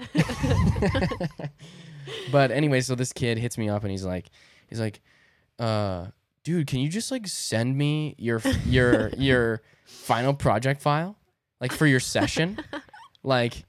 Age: 10-29